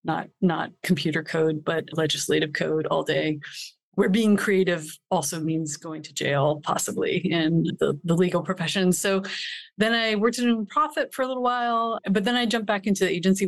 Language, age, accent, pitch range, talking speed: English, 30-49, American, 160-190 Hz, 185 wpm